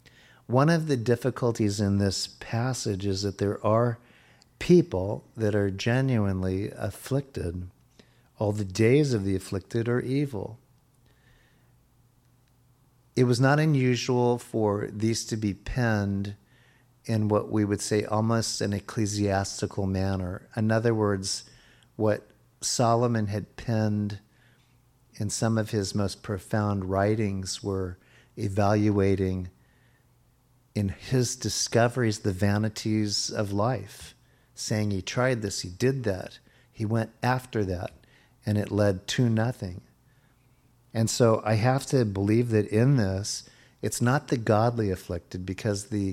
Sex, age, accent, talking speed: male, 50-69, American, 125 wpm